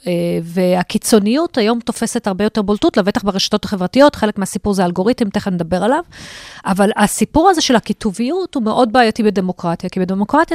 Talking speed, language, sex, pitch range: 155 wpm, Hebrew, female, 185-245 Hz